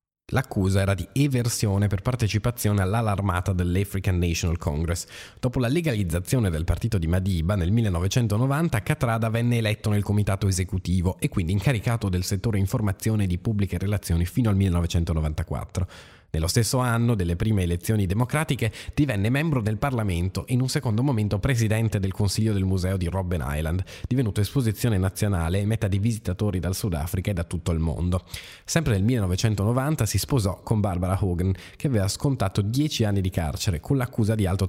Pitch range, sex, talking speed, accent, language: 95-115 Hz, male, 165 wpm, native, Italian